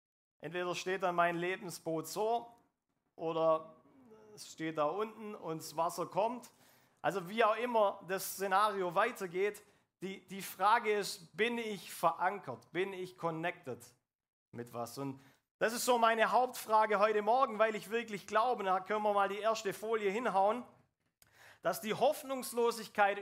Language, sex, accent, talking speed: German, male, German, 145 wpm